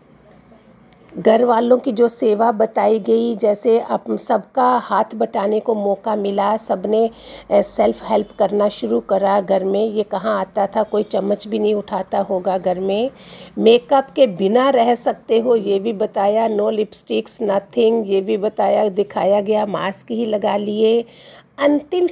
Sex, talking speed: female, 150 wpm